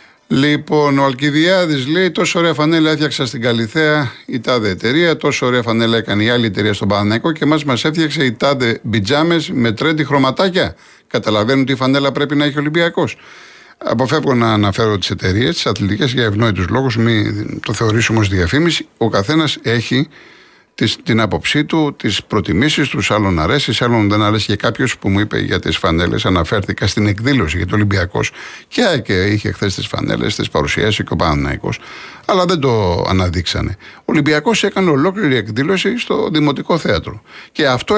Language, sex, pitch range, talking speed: Greek, male, 100-145 Hz, 170 wpm